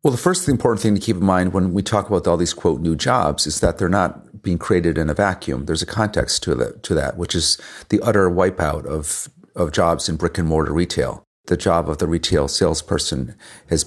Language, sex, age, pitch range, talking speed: English, male, 40-59, 80-100 Hz, 220 wpm